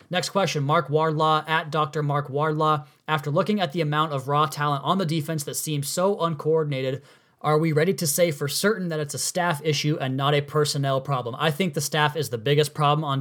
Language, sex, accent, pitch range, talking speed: English, male, American, 135-155 Hz, 225 wpm